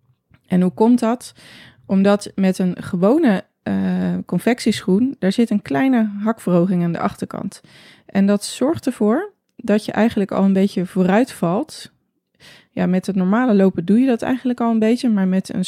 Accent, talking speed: Dutch, 170 wpm